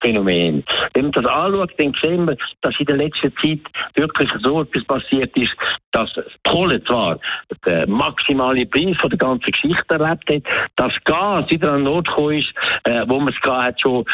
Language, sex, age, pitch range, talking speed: German, male, 60-79, 120-165 Hz, 175 wpm